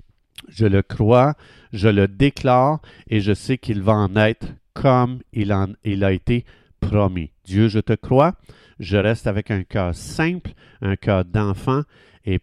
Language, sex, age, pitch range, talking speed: French, male, 50-69, 95-125 Hz, 160 wpm